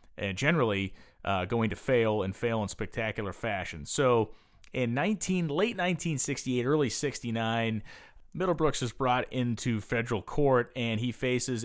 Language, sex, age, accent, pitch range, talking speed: English, male, 30-49, American, 100-125 Hz, 140 wpm